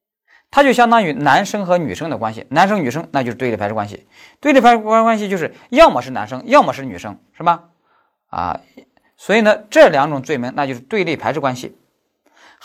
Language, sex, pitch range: Chinese, male, 150-240 Hz